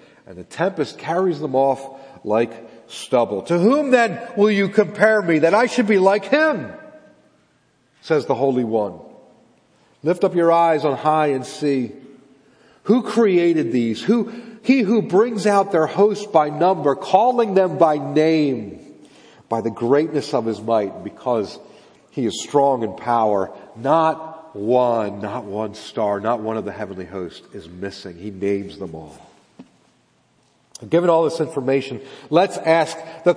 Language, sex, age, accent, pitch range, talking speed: English, male, 40-59, American, 135-220 Hz, 155 wpm